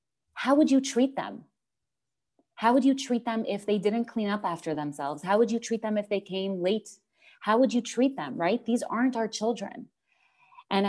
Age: 30-49